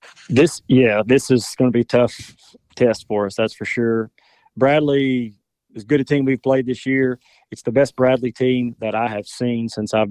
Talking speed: 200 wpm